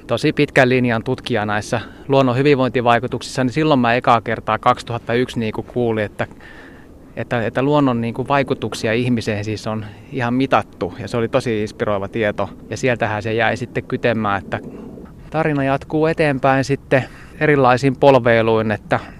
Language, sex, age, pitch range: Finnish, male, 20-39, 110-130 Hz